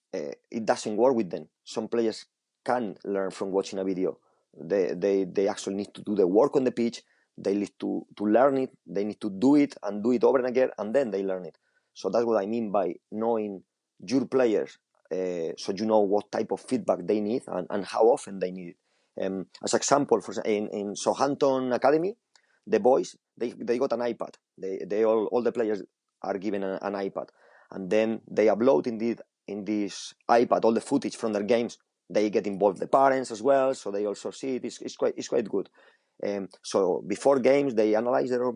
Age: 20-39